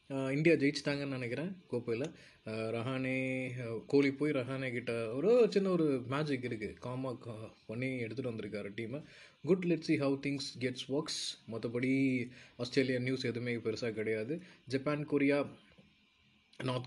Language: Tamil